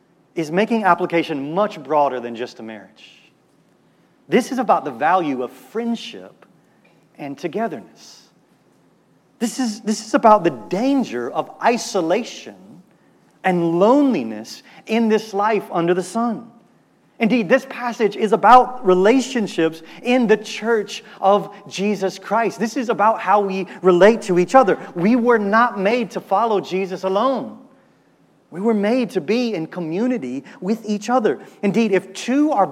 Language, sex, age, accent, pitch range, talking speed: English, male, 30-49, American, 190-255 Hz, 140 wpm